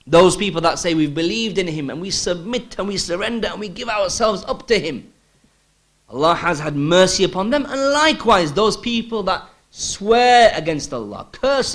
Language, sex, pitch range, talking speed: English, male, 120-185 Hz, 185 wpm